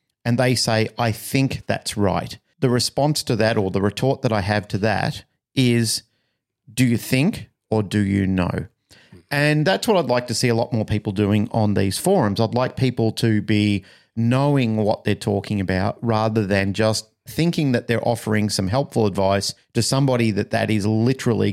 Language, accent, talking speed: English, Australian, 190 wpm